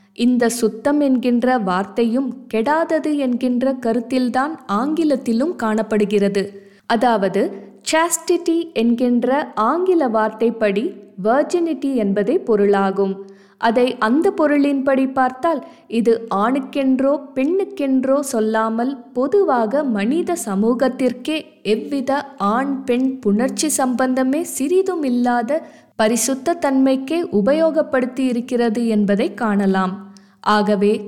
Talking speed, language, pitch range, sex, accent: 70 wpm, Tamil, 215-280 Hz, female, native